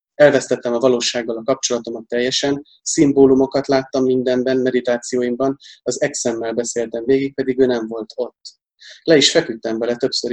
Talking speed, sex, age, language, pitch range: 140 wpm, male, 30-49, Hungarian, 120-135 Hz